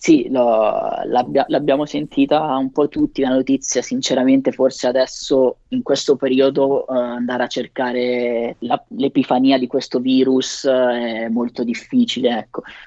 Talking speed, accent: 140 wpm, native